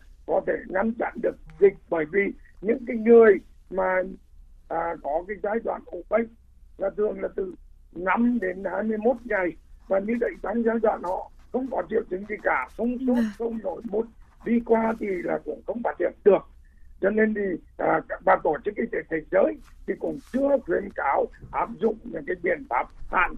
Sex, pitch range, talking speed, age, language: male, 180-250 Hz, 195 wpm, 60-79, Vietnamese